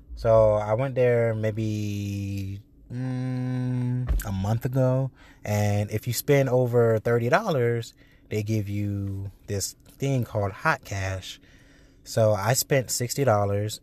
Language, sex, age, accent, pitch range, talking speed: English, male, 20-39, American, 105-140 Hz, 125 wpm